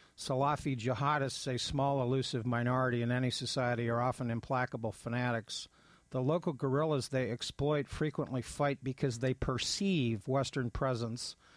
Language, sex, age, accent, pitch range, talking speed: English, male, 50-69, American, 125-145 Hz, 130 wpm